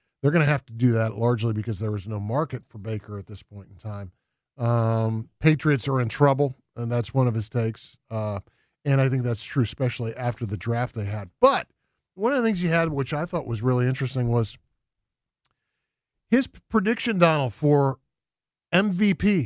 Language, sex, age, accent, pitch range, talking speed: English, male, 40-59, American, 115-160 Hz, 190 wpm